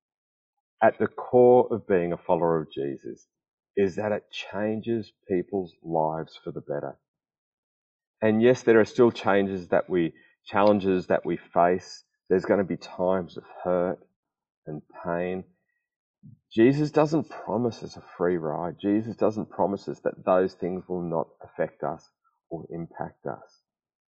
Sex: male